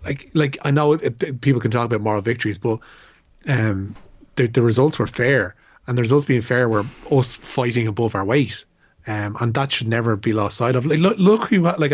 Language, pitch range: English, 110-130 Hz